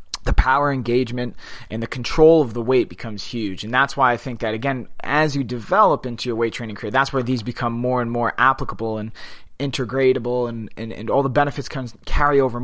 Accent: American